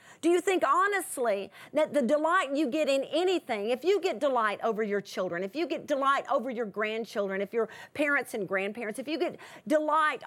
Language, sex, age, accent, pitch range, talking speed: English, female, 40-59, American, 230-295 Hz, 200 wpm